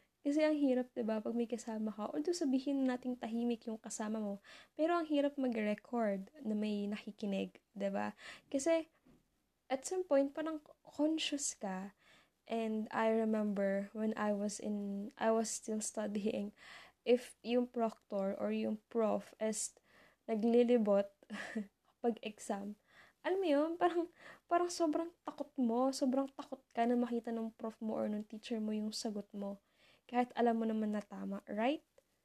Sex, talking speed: female, 150 wpm